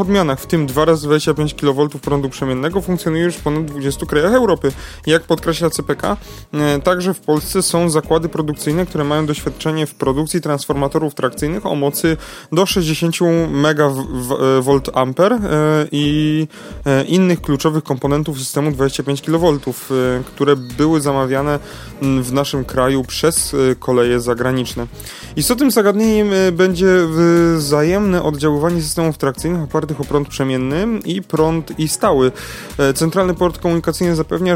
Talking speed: 125 wpm